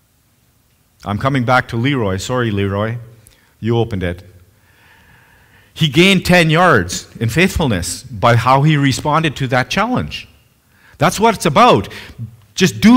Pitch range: 100-150 Hz